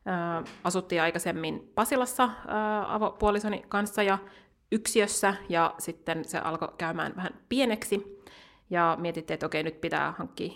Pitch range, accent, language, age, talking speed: 170-210 Hz, native, Finnish, 30-49, 120 wpm